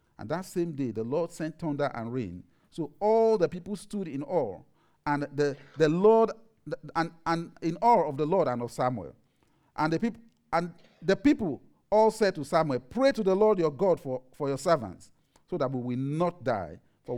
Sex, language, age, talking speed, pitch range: male, English, 50-69, 205 wpm, 130-195 Hz